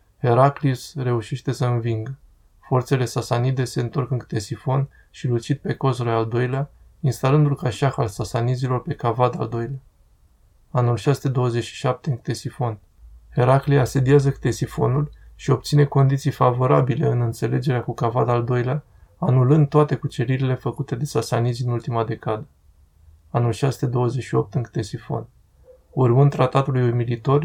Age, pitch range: 20-39, 115-135 Hz